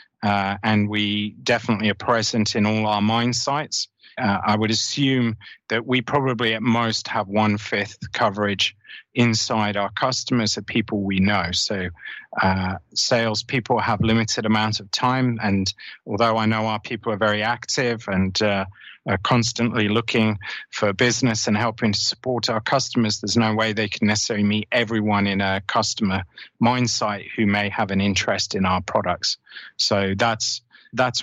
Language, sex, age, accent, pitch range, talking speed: Finnish, male, 30-49, British, 100-120 Hz, 165 wpm